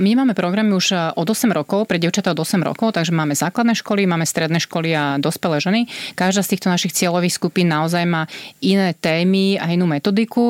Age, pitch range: 30-49, 165-190 Hz